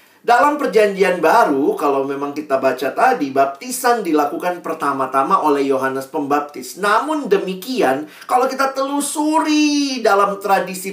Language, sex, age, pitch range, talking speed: Indonesian, male, 40-59, 140-220 Hz, 115 wpm